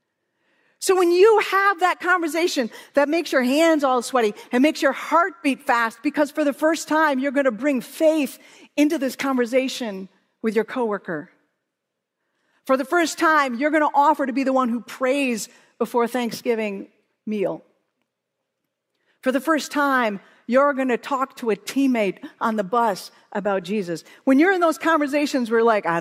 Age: 50-69